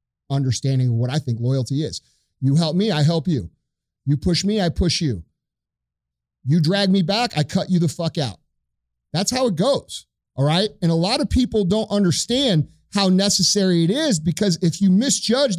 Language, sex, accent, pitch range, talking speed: English, male, American, 165-220 Hz, 195 wpm